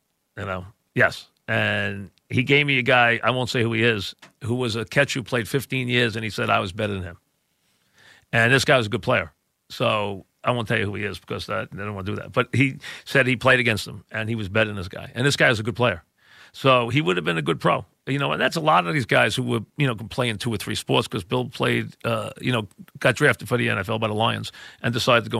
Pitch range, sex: 110-135 Hz, male